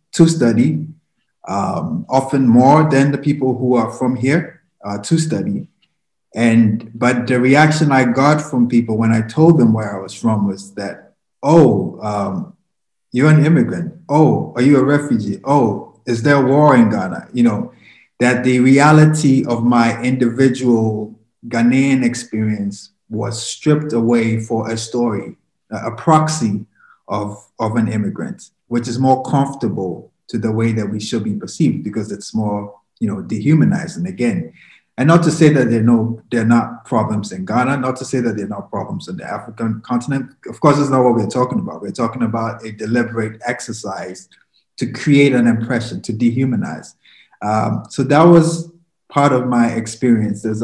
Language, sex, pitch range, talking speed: English, male, 115-140 Hz, 170 wpm